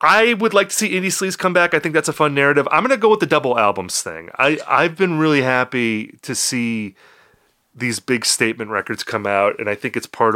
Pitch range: 110-150 Hz